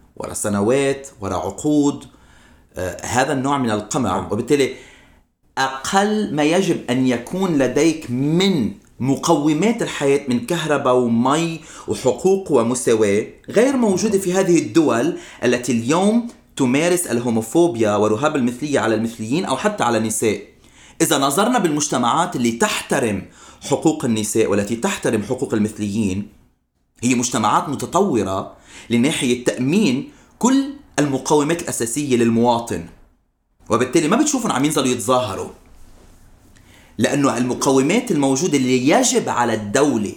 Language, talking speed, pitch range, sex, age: Arabic, 110 wpm, 115-170 Hz, male, 30-49